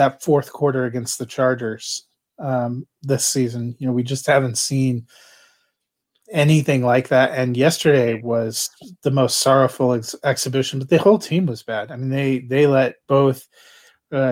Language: English